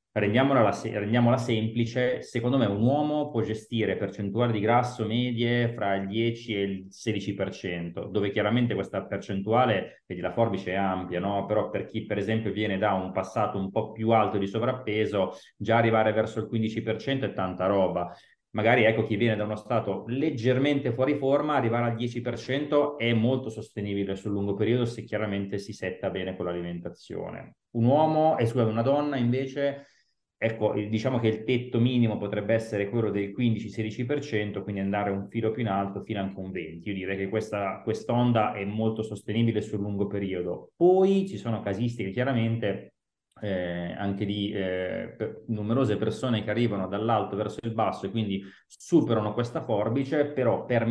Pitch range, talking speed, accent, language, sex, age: 100-120 Hz, 170 wpm, native, Italian, male, 30-49